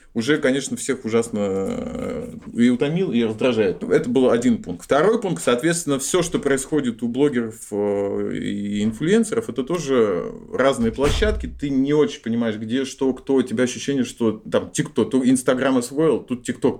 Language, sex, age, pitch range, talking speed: Russian, male, 20-39, 115-155 Hz, 155 wpm